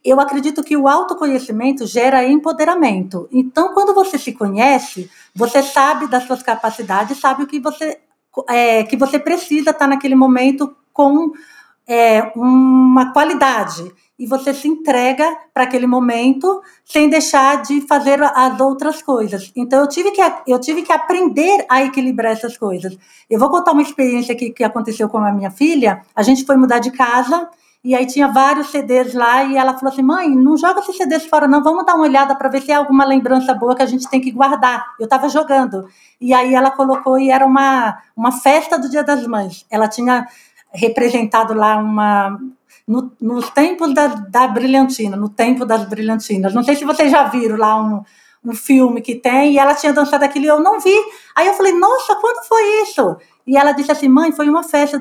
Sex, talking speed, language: female, 195 wpm, Portuguese